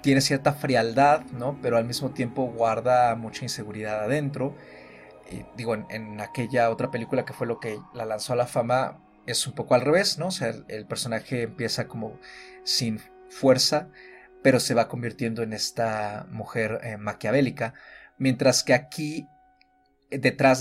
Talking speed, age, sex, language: 160 wpm, 30-49, male, Spanish